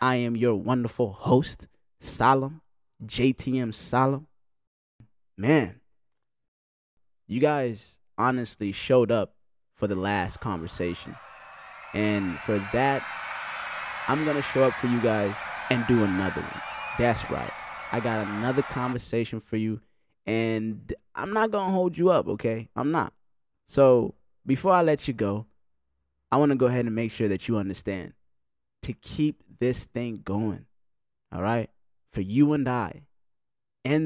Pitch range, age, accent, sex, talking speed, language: 100-130 Hz, 20-39, American, male, 145 wpm, English